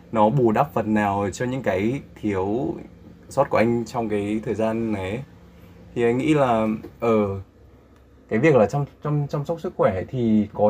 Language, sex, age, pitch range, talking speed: Vietnamese, male, 20-39, 100-120 Hz, 195 wpm